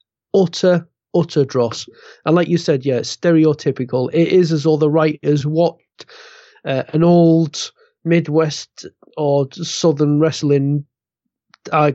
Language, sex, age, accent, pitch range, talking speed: English, male, 30-49, British, 135-170 Hz, 120 wpm